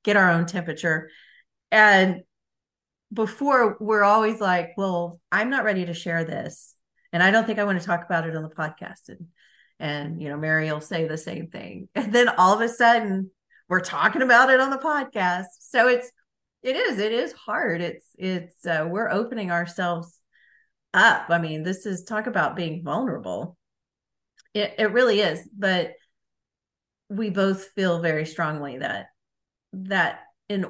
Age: 40-59